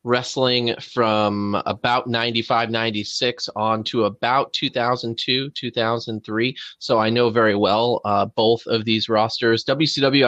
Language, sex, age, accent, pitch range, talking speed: English, male, 30-49, American, 105-120 Hz, 135 wpm